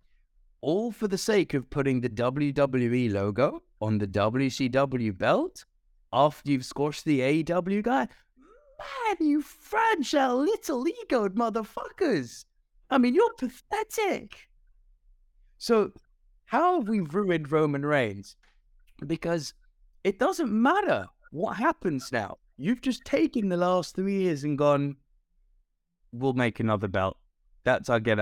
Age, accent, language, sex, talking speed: 20-39, British, English, male, 125 wpm